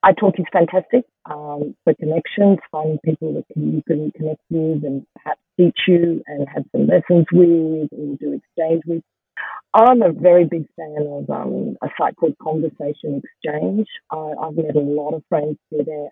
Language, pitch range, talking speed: English, 155-210 Hz, 175 wpm